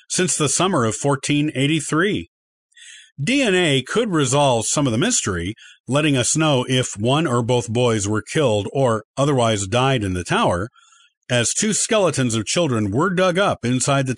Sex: male